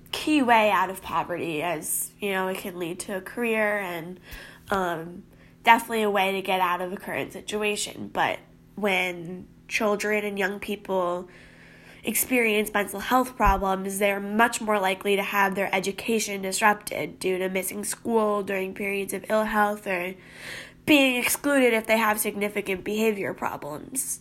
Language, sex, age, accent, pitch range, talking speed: English, female, 10-29, American, 195-225 Hz, 155 wpm